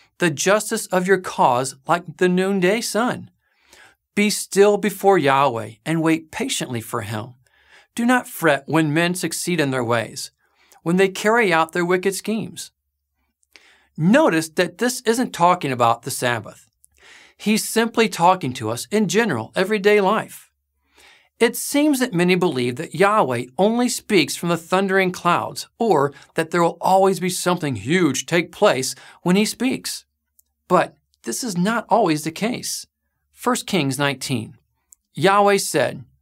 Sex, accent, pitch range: male, American, 125-200 Hz